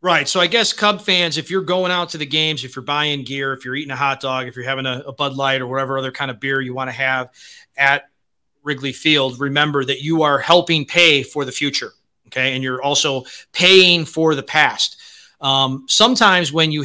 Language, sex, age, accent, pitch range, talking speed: English, male, 30-49, American, 135-180 Hz, 230 wpm